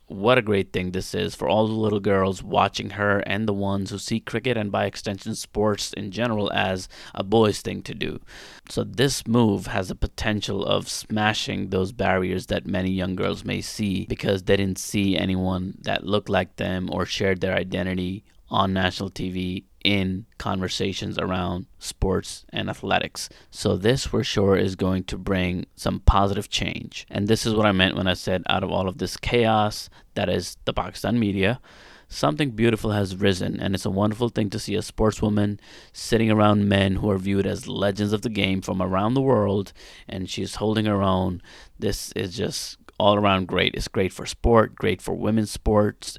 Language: English